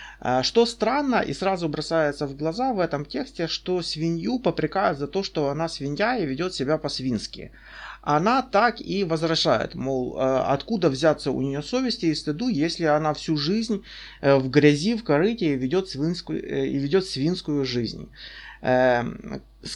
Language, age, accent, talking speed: Russian, 30-49, native, 145 wpm